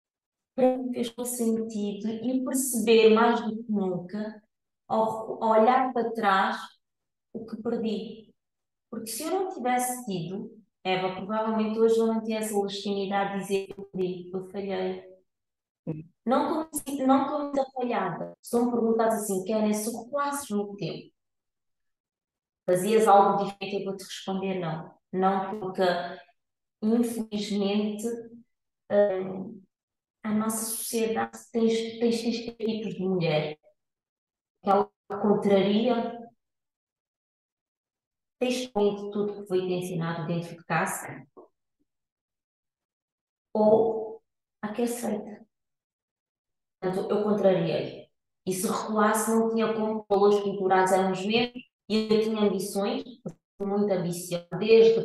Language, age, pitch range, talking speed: Portuguese, 20-39, 190-225 Hz, 115 wpm